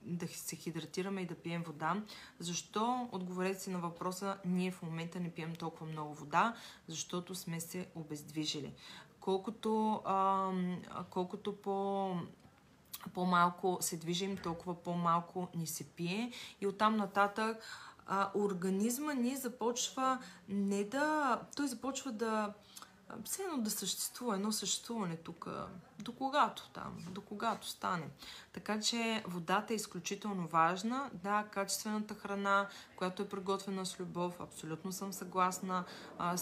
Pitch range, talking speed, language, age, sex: 175-210 Hz, 130 wpm, Bulgarian, 20-39, female